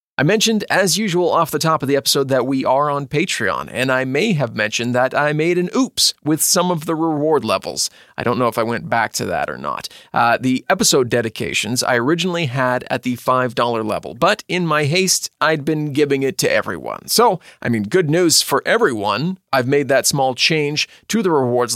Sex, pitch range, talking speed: male, 125-160 Hz, 215 wpm